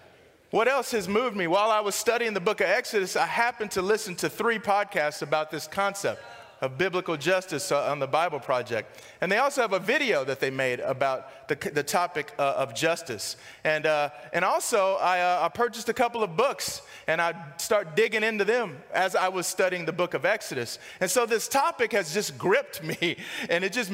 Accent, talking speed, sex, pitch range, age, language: American, 210 wpm, male, 155-220 Hz, 30-49, English